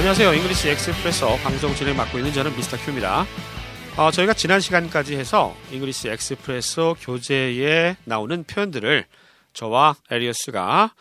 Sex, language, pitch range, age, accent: male, Korean, 130-215 Hz, 40-59, native